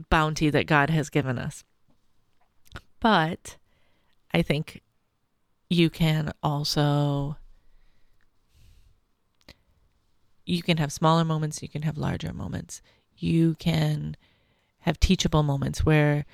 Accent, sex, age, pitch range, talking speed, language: American, female, 30-49, 105-155 Hz, 105 wpm, English